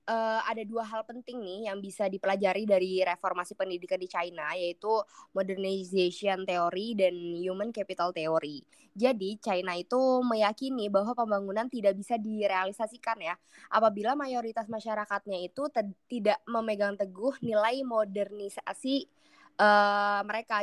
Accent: native